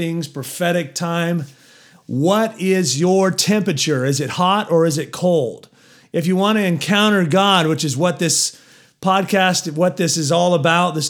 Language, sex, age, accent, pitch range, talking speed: English, male, 40-59, American, 145-180 Hz, 160 wpm